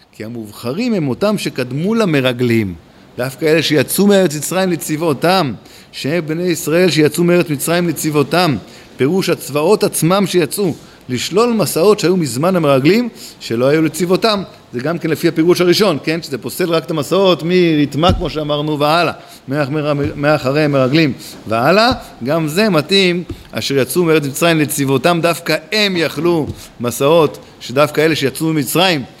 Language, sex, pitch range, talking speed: Hebrew, male, 125-165 Hz, 115 wpm